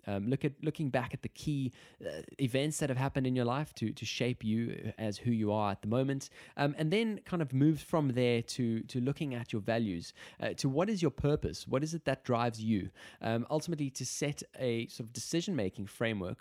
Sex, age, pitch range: male, 20-39, 110-140 Hz